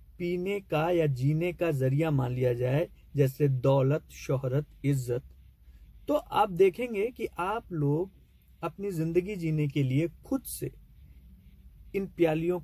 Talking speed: 135 wpm